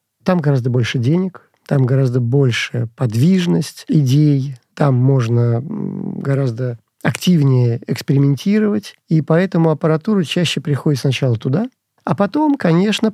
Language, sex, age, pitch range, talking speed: Russian, male, 40-59, 125-155 Hz, 110 wpm